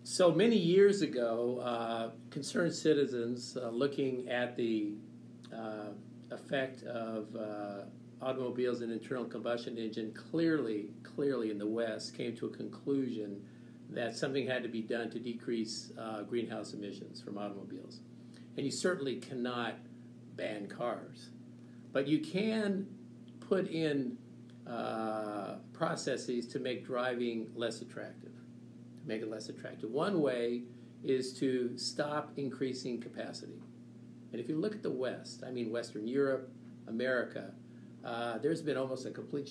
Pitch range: 115-130 Hz